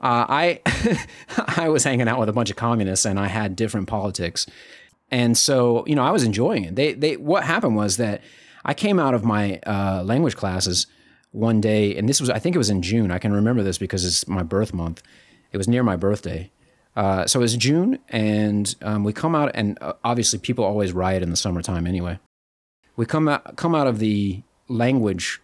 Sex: male